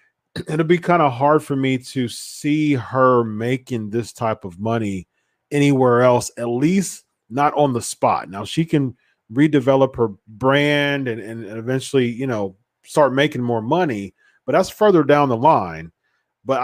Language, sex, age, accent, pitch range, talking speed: English, male, 40-59, American, 115-145 Hz, 160 wpm